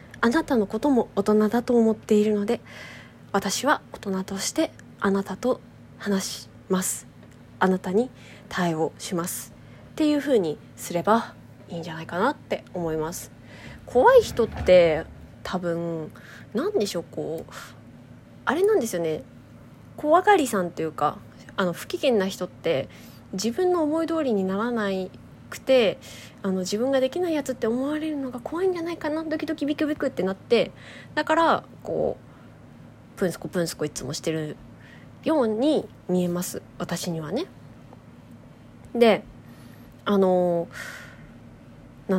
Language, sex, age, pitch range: Japanese, female, 20-39, 170-240 Hz